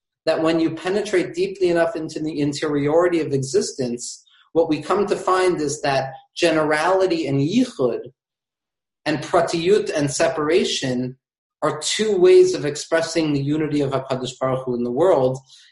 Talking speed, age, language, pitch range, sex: 150 wpm, 40-59, English, 135-185 Hz, male